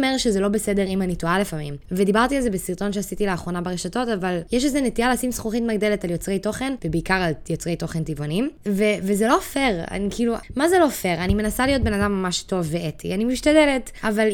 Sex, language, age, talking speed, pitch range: female, Hebrew, 10-29, 210 wpm, 180-240 Hz